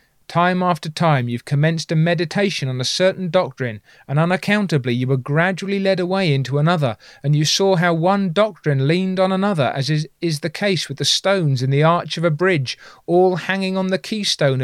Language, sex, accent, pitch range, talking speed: English, male, British, 145-185 Hz, 195 wpm